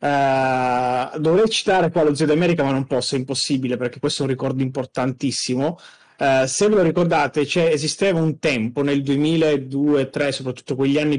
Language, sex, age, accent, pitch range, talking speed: Italian, male, 30-49, native, 125-155 Hz, 170 wpm